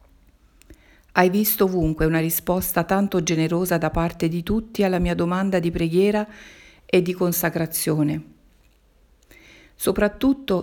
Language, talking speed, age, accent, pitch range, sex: Italian, 115 wpm, 50-69, native, 155-185 Hz, female